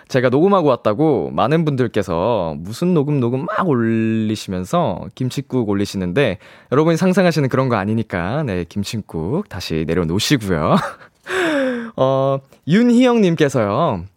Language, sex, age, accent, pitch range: Korean, male, 20-39, native, 100-155 Hz